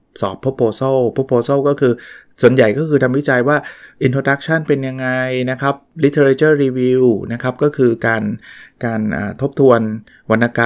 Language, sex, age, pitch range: Thai, male, 20-39, 110-140 Hz